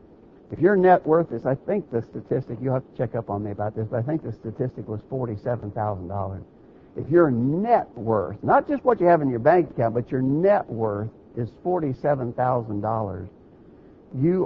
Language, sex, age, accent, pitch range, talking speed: English, male, 60-79, American, 120-165 Hz, 185 wpm